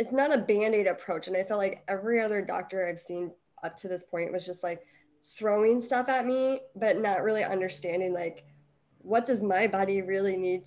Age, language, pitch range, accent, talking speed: 20-39, English, 180-220 Hz, American, 200 wpm